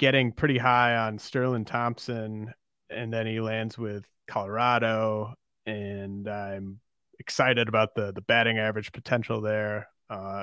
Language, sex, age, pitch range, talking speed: English, male, 30-49, 105-125 Hz, 130 wpm